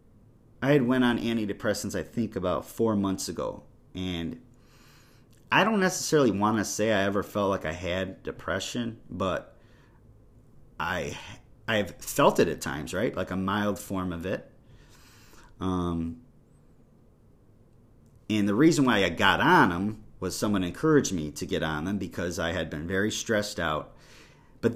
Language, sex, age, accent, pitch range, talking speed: English, male, 30-49, American, 100-120 Hz, 160 wpm